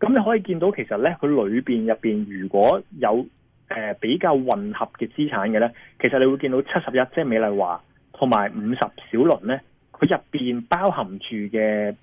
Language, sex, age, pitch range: Chinese, male, 20-39, 105-150 Hz